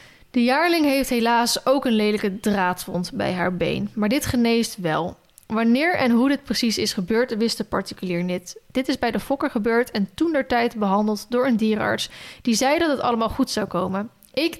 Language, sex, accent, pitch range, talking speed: Dutch, female, Dutch, 205-250 Hz, 200 wpm